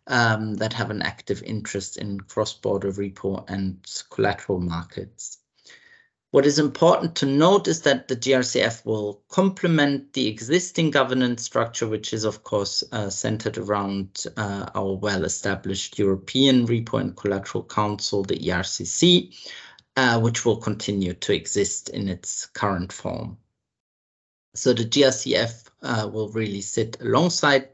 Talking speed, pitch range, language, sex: 135 wpm, 100-130 Hz, English, male